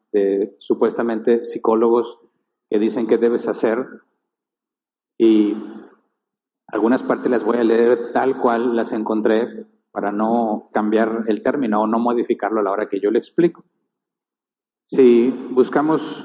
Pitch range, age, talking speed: 110-130 Hz, 40-59, 135 wpm